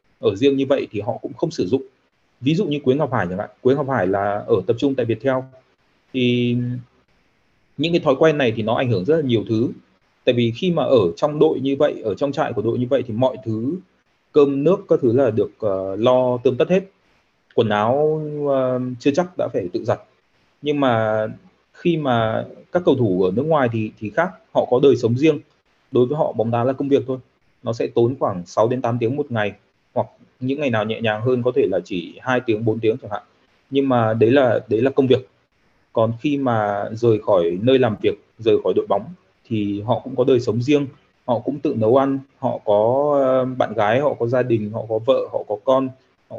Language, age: Vietnamese, 20-39